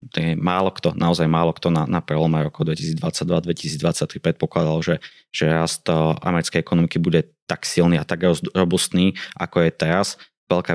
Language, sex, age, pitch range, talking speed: Slovak, male, 20-39, 80-90 Hz, 145 wpm